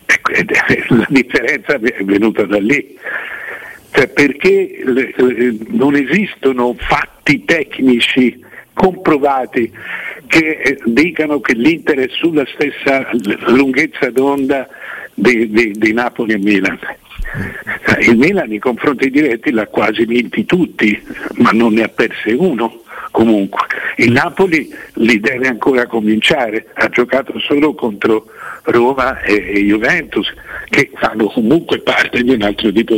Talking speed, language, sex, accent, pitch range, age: 115 wpm, Italian, male, native, 115-180 Hz, 60-79